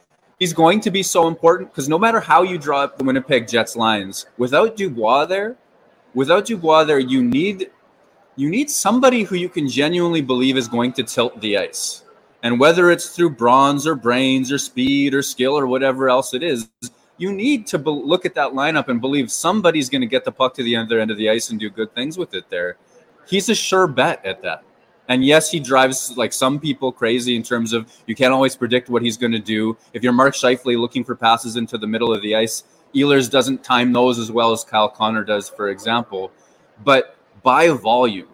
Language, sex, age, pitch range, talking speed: English, male, 20-39, 115-165 Hz, 215 wpm